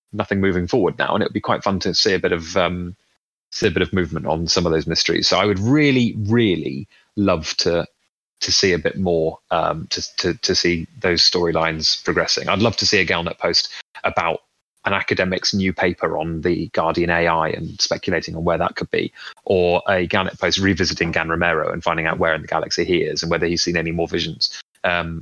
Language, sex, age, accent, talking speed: English, male, 30-49, British, 215 wpm